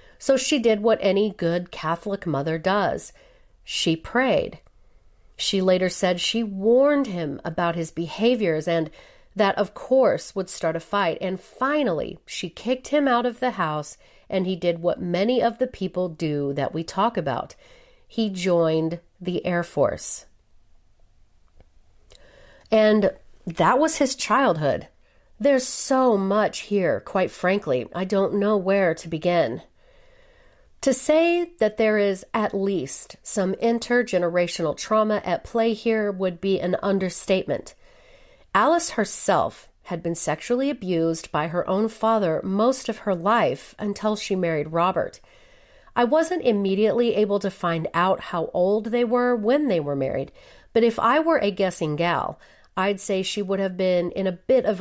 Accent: American